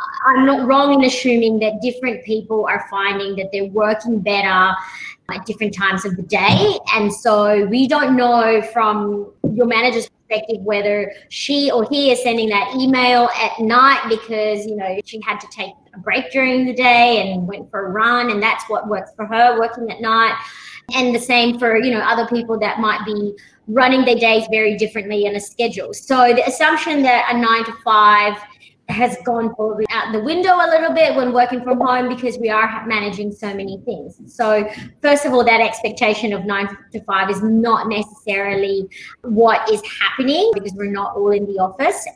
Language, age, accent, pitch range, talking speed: English, 20-39, Australian, 205-245 Hz, 190 wpm